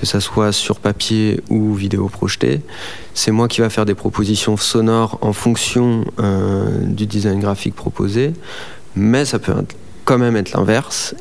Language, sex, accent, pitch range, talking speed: French, male, French, 100-115 Hz, 160 wpm